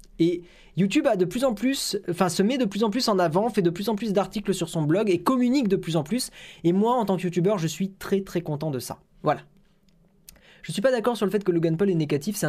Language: French